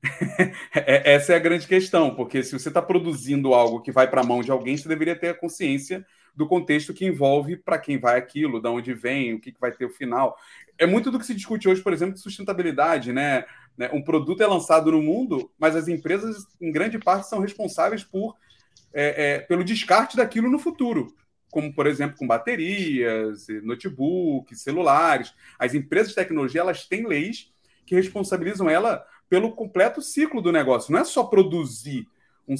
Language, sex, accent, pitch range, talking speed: Portuguese, male, Brazilian, 140-205 Hz, 185 wpm